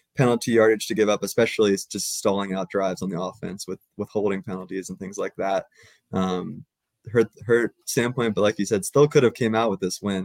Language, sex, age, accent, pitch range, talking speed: English, male, 20-39, American, 95-115 Hz, 215 wpm